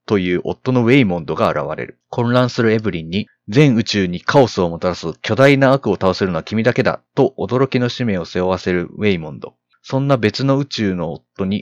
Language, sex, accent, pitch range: Japanese, male, native, 95-125 Hz